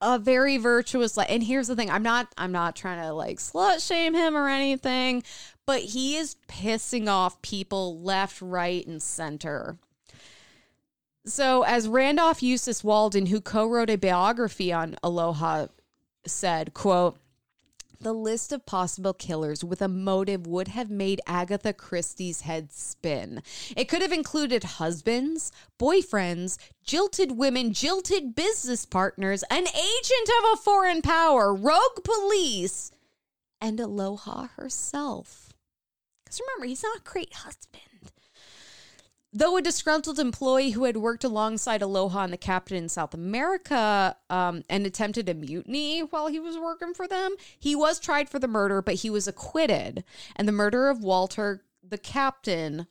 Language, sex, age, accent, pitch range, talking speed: English, female, 20-39, American, 190-275 Hz, 145 wpm